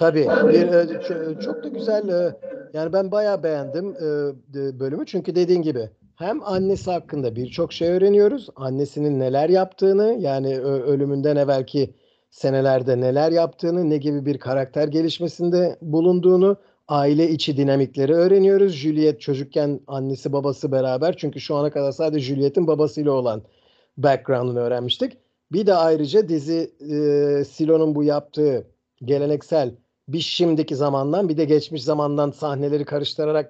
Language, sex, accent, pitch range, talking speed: Turkish, male, native, 140-175 Hz, 125 wpm